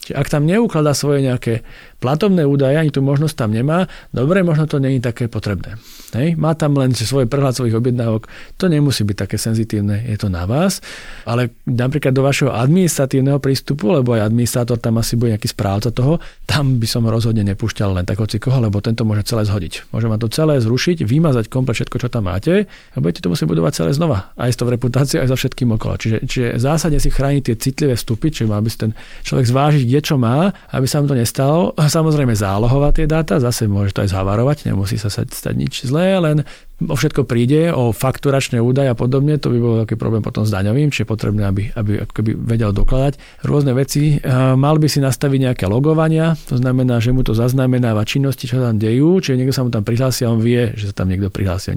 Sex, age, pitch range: male, 40-59, 115-145 Hz